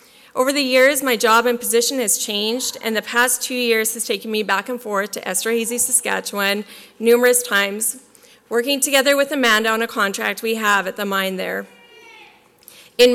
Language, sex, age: English, female, 30-49